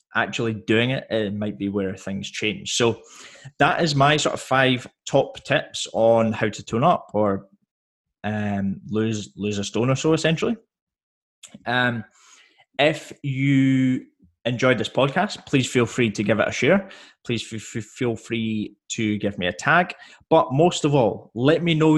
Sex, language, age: male, English, 20-39